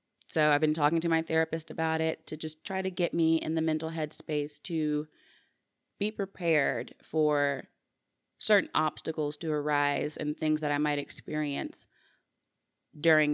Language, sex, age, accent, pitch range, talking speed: English, female, 30-49, American, 150-170 Hz, 155 wpm